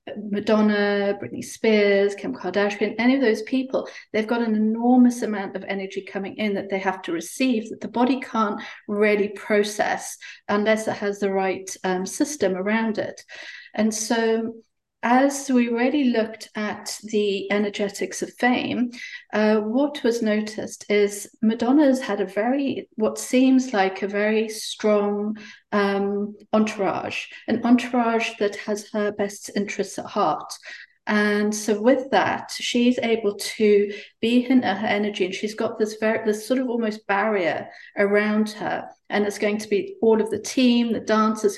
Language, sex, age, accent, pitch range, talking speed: English, female, 40-59, British, 205-235 Hz, 155 wpm